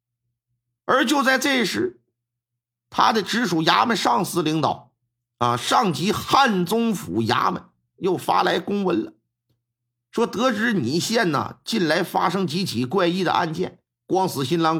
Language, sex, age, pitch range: Chinese, male, 50-69, 120-195 Hz